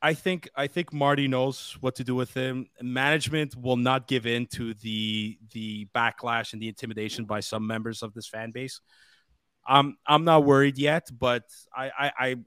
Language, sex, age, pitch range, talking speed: English, male, 30-49, 105-130 Hz, 190 wpm